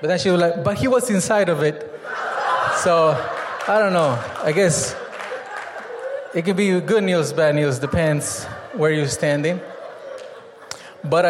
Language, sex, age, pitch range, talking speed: English, male, 20-39, 130-170 Hz, 155 wpm